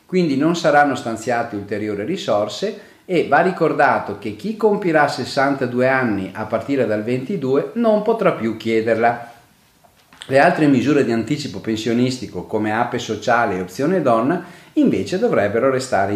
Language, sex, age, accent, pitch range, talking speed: Italian, male, 40-59, native, 110-145 Hz, 135 wpm